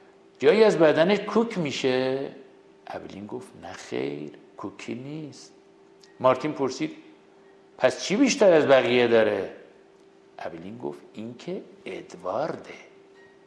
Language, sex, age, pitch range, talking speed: Persian, male, 60-79, 120-180 Hz, 95 wpm